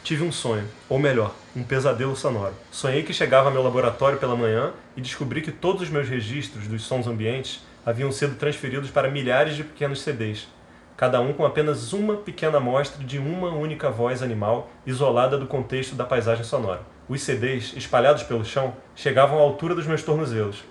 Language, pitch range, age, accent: Portuguese, 120-145 Hz, 30-49, Brazilian